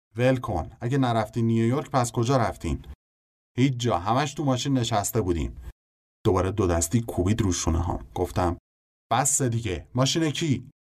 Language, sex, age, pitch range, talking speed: Persian, male, 30-49, 85-120 Hz, 130 wpm